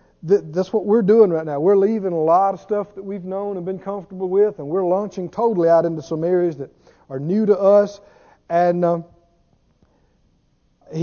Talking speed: 185 wpm